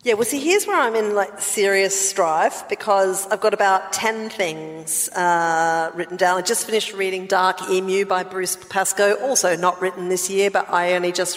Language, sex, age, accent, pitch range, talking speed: English, female, 50-69, Australian, 165-190 Hz, 195 wpm